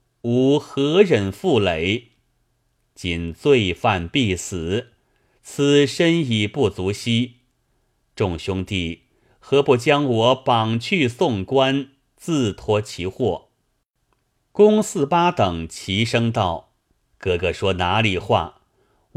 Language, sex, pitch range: Chinese, male, 95-130 Hz